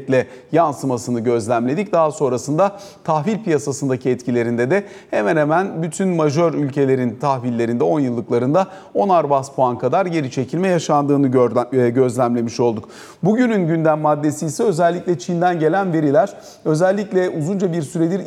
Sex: male